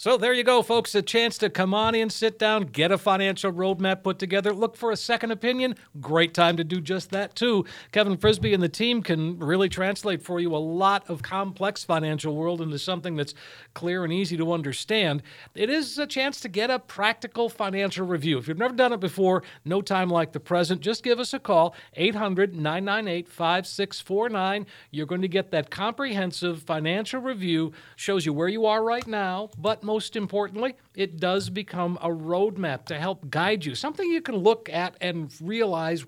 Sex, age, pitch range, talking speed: male, 50-69, 170-215 Hz, 195 wpm